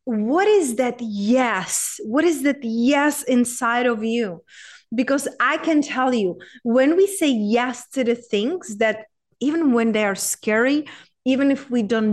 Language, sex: English, female